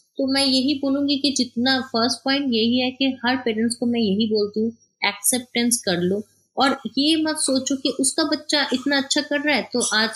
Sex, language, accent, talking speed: female, Hindi, native, 205 wpm